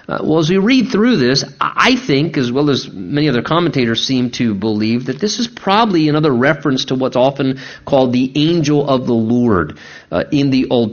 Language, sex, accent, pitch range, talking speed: English, male, American, 125-165 Hz, 205 wpm